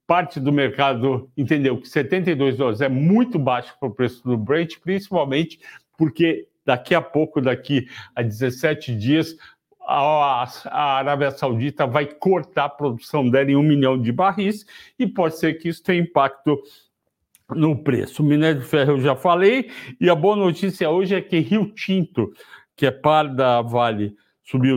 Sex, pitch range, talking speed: male, 135-170 Hz, 170 wpm